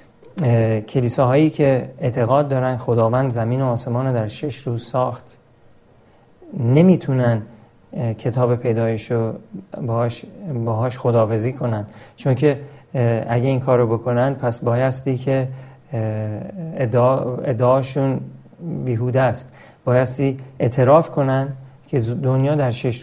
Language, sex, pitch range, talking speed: Persian, male, 120-145 Hz, 110 wpm